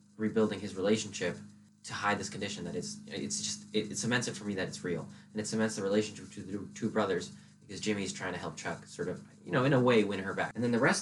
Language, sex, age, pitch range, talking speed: English, male, 20-39, 100-120 Hz, 265 wpm